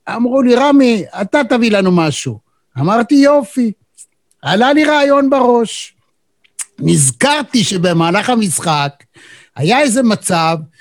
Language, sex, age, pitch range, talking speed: Hebrew, male, 60-79, 175-255 Hz, 105 wpm